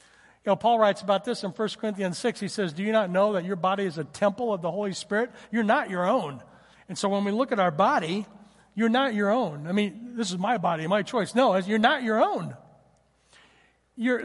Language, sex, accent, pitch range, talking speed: English, male, American, 180-235 Hz, 235 wpm